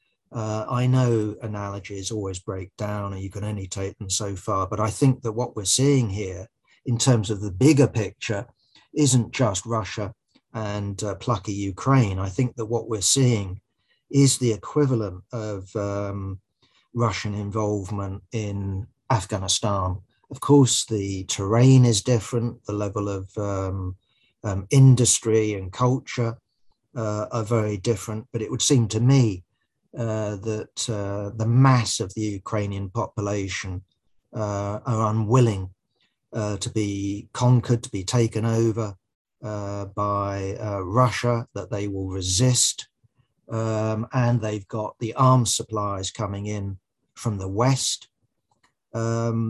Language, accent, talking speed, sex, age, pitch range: English, British, 140 wpm, male, 40-59, 100-120 Hz